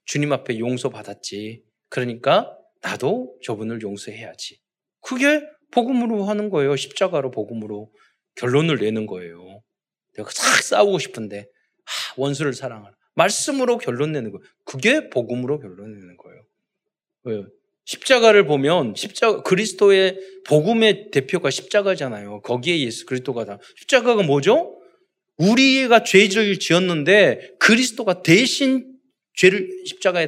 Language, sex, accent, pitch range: Korean, male, native, 140-225 Hz